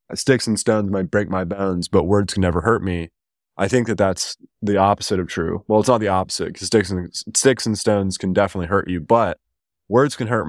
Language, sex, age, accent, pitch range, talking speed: English, male, 20-39, American, 90-105 Hz, 215 wpm